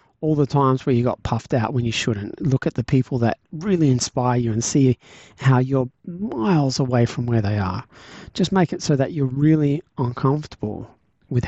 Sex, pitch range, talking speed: male, 120-145 Hz, 200 wpm